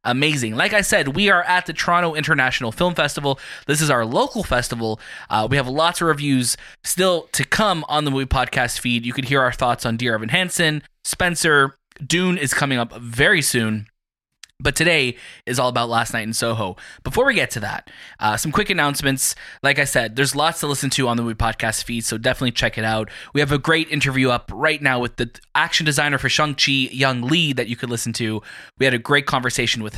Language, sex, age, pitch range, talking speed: English, male, 20-39, 125-175 Hz, 220 wpm